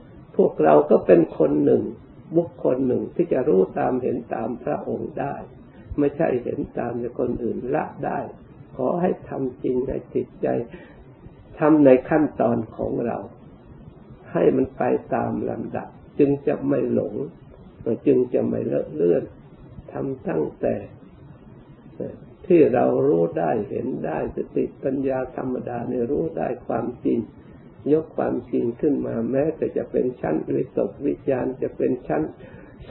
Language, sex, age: Thai, male, 60-79